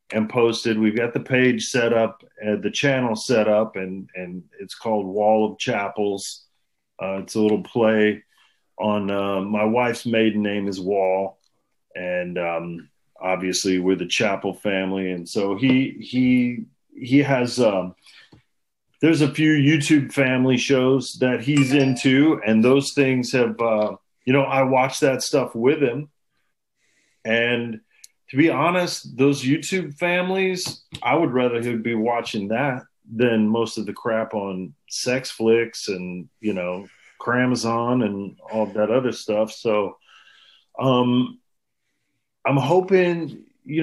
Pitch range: 105-135 Hz